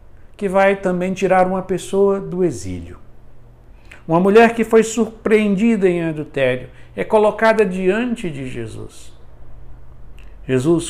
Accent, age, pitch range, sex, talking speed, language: Brazilian, 60-79, 115-170 Hz, male, 115 wpm, Portuguese